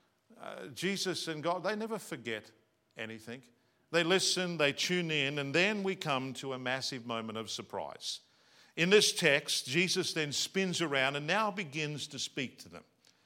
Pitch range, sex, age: 135-190 Hz, male, 50-69